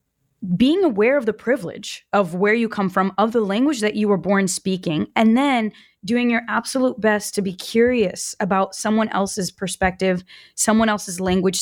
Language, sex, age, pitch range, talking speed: English, female, 20-39, 190-235 Hz, 175 wpm